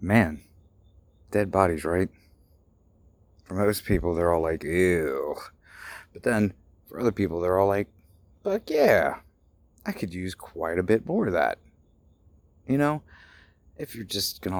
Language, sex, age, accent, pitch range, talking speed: English, male, 30-49, American, 85-100 Hz, 150 wpm